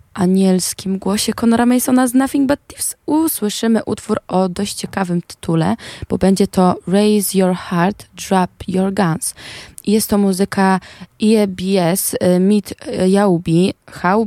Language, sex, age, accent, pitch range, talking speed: Polish, female, 20-39, native, 175-205 Hz, 125 wpm